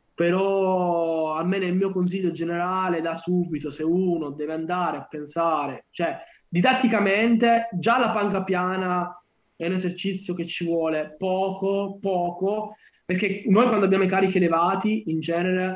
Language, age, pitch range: Italian, 20-39, 165-205 Hz